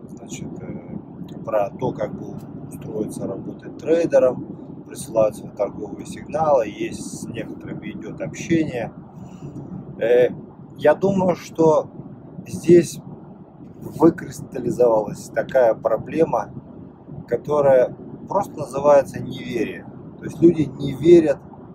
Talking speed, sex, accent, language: 85 wpm, male, native, Russian